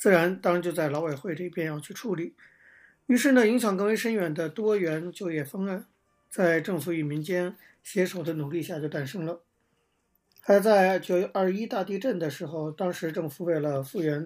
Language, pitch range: Chinese, 160-195 Hz